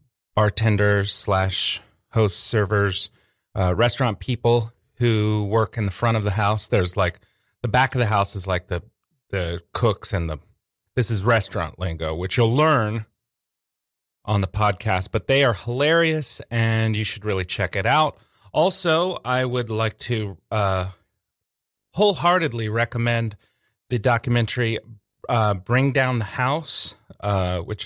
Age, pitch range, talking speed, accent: 30-49, 100-120 Hz, 145 wpm, American